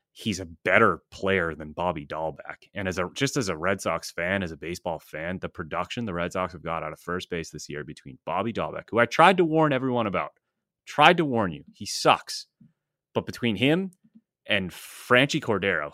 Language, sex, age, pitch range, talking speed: English, male, 30-49, 90-125 Hz, 205 wpm